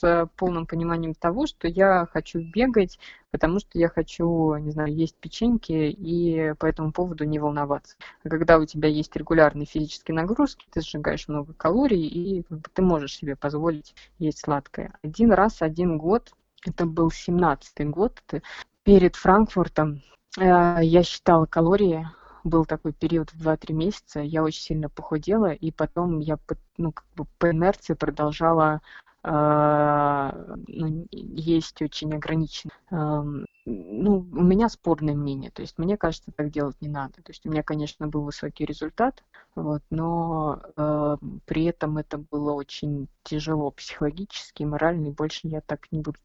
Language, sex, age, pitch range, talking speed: Russian, female, 20-39, 150-175 Hz, 145 wpm